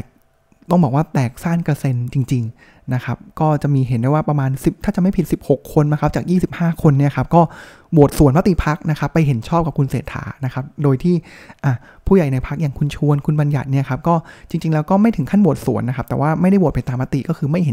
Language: Thai